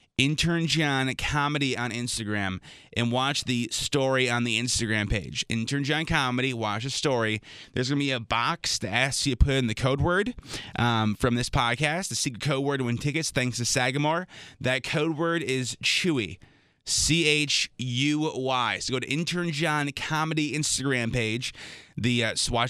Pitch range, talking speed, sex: 120-145 Hz, 170 wpm, male